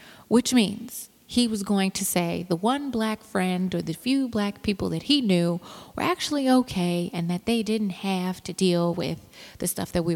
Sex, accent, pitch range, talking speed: female, American, 170-205 Hz, 200 wpm